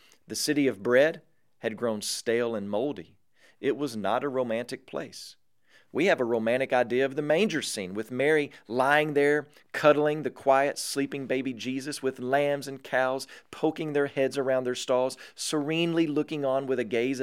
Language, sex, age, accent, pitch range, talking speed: English, male, 40-59, American, 125-165 Hz, 175 wpm